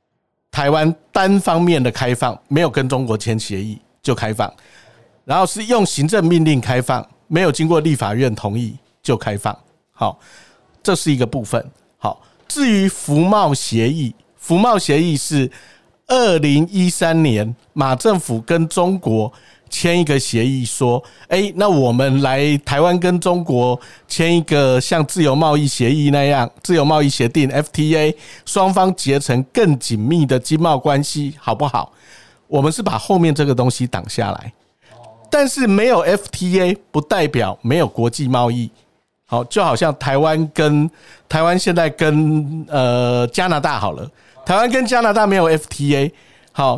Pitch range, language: 125-170 Hz, Chinese